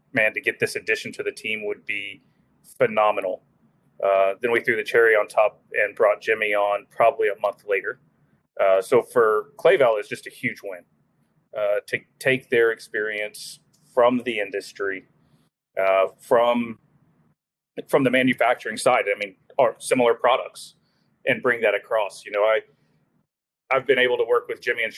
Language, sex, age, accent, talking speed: English, male, 30-49, American, 170 wpm